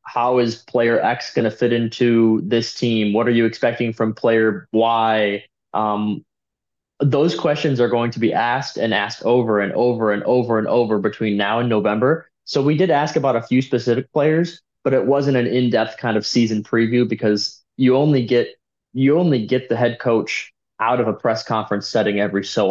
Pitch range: 110-125 Hz